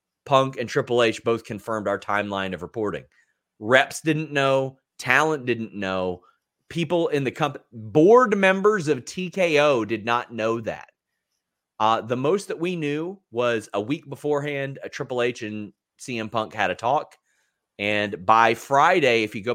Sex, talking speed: male, 165 wpm